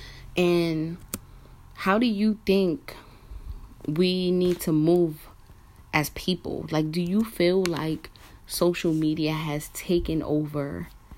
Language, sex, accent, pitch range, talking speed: English, female, American, 145-195 Hz, 115 wpm